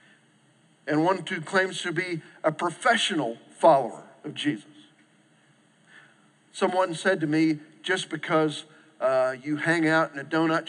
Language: English